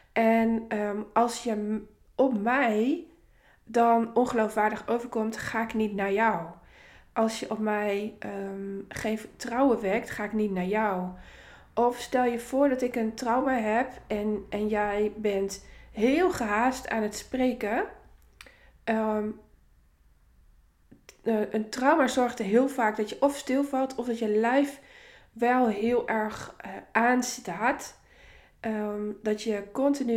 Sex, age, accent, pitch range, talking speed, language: female, 20-39, Dutch, 210-245 Hz, 135 wpm, Dutch